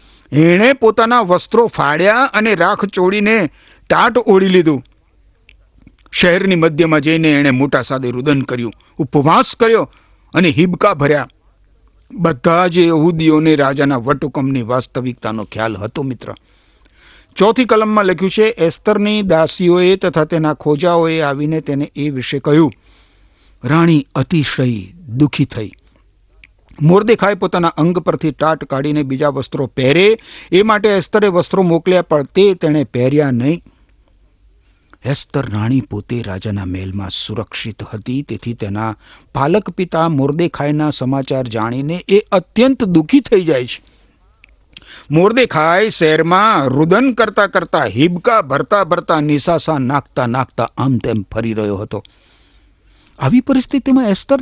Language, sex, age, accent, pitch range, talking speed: Gujarati, male, 60-79, native, 115-180 Hz, 110 wpm